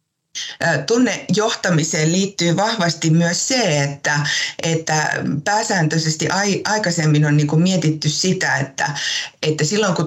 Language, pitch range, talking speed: Finnish, 145-185 Hz, 105 wpm